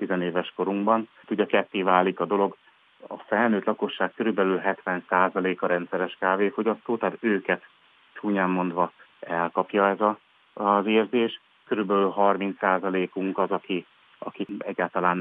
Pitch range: 90-100 Hz